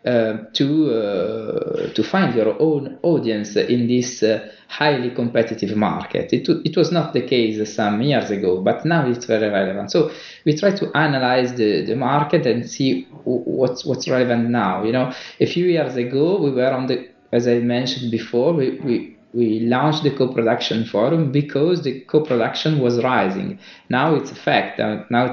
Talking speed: 175 wpm